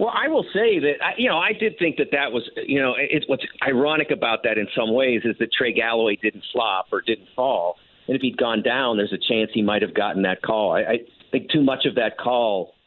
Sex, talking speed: male, 245 wpm